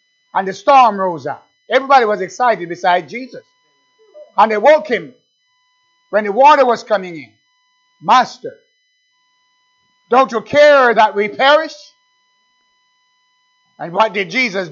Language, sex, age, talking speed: English, male, 50-69, 125 wpm